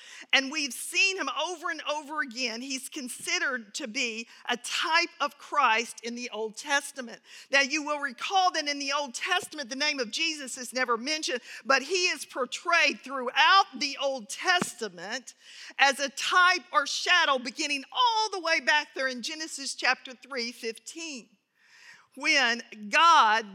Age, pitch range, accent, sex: 50-69, 250-340 Hz, American, female